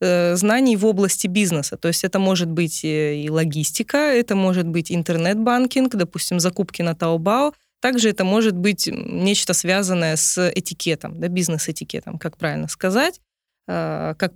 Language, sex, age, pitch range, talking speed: Russian, female, 20-39, 170-220 Hz, 140 wpm